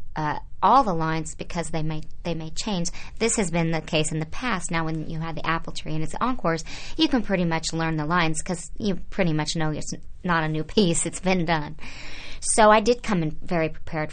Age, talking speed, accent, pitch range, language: 30-49, 235 wpm, American, 160-185 Hz, English